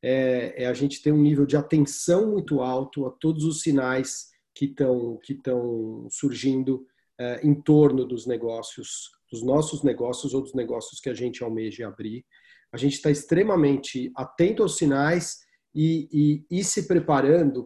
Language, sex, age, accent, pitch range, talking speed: Portuguese, male, 40-59, Brazilian, 130-155 Hz, 160 wpm